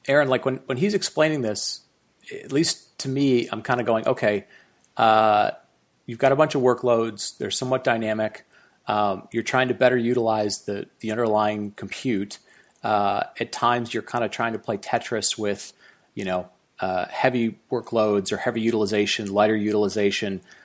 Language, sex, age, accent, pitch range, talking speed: English, male, 30-49, American, 105-120 Hz, 165 wpm